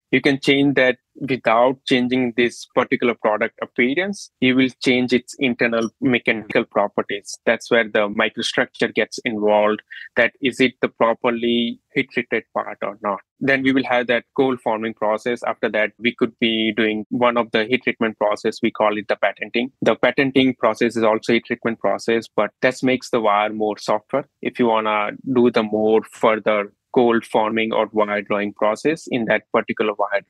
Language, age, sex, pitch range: English, 20-39, male, 110-125 Hz